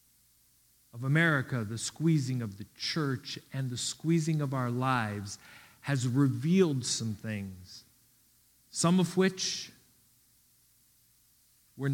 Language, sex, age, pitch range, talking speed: English, male, 50-69, 130-175 Hz, 105 wpm